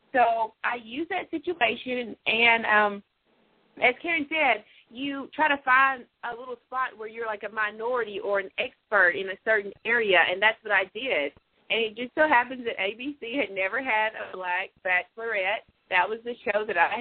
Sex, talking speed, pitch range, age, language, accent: female, 185 wpm, 180-235 Hz, 30-49, English, American